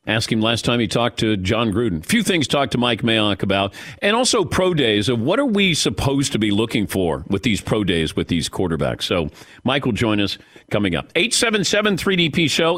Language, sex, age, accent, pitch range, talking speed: English, male, 50-69, American, 105-155 Hz, 205 wpm